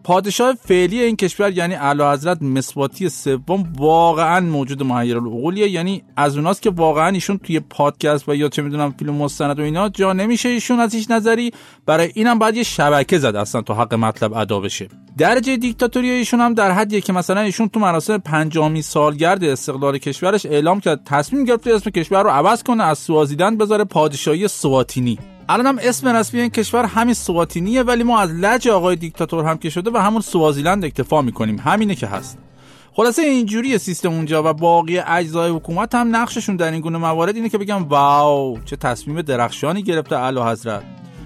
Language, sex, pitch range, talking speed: Persian, male, 145-220 Hz, 180 wpm